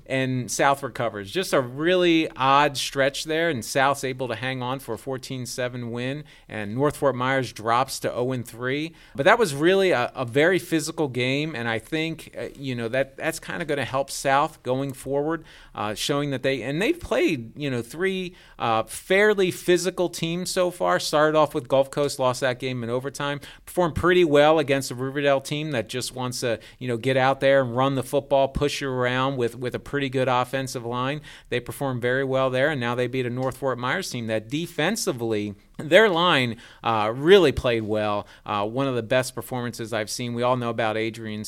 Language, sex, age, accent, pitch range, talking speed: English, male, 40-59, American, 125-150 Hz, 210 wpm